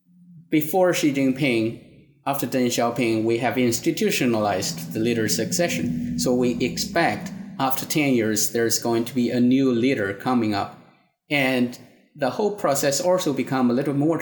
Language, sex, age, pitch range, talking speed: English, male, 30-49, 120-155 Hz, 150 wpm